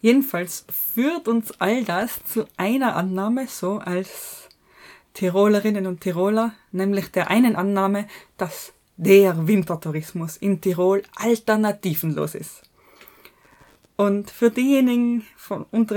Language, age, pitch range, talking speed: German, 20-39, 185-225 Hz, 105 wpm